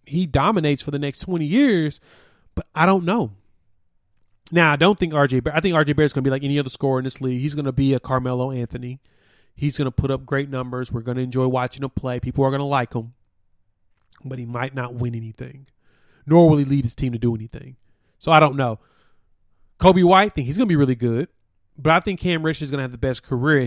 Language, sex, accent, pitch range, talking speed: English, male, American, 120-150 Hz, 250 wpm